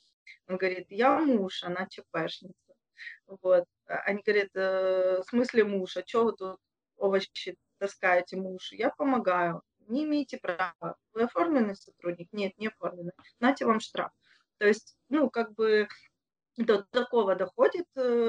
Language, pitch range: Russian, 195-245 Hz